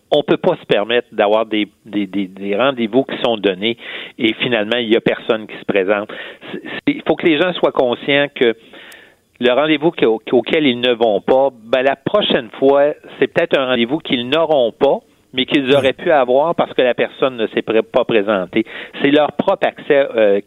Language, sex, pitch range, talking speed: French, male, 105-140 Hz, 200 wpm